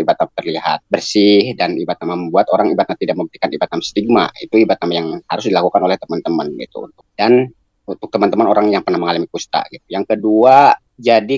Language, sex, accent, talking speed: Indonesian, male, native, 170 wpm